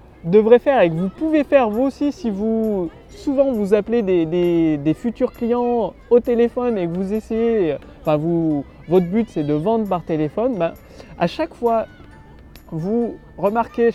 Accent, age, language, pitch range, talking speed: French, 20-39, French, 170-240 Hz, 170 wpm